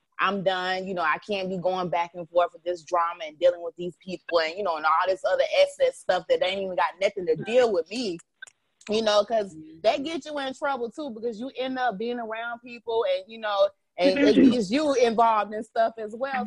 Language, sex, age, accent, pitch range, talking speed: English, female, 20-39, American, 185-250 Hz, 240 wpm